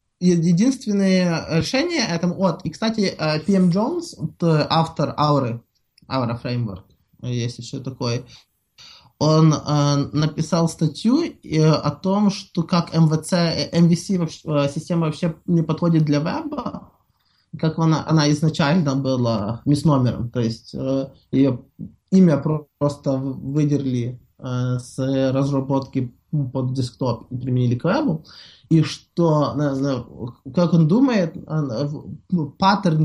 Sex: male